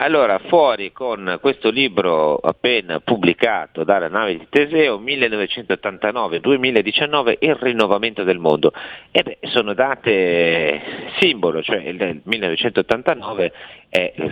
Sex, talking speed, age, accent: male, 95 wpm, 40-59, native